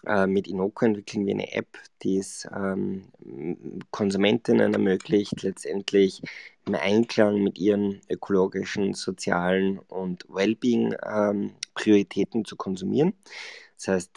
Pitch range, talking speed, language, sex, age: 95-110 Hz, 110 wpm, German, male, 20-39